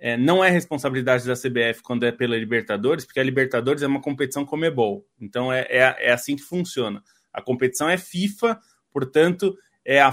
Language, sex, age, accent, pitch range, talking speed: Portuguese, male, 20-39, Brazilian, 125-165 Hz, 170 wpm